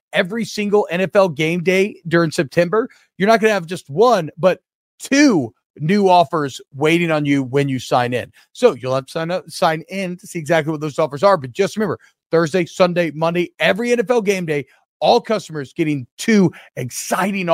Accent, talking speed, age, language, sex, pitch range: American, 190 wpm, 40-59, English, male, 155-205 Hz